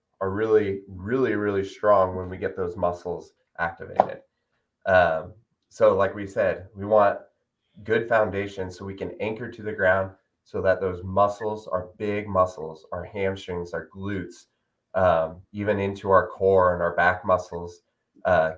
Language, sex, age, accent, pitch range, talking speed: English, male, 20-39, American, 95-105 Hz, 155 wpm